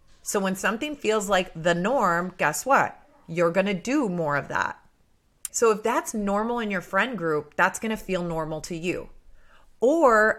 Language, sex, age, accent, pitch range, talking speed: English, female, 30-49, American, 175-220 Hz, 175 wpm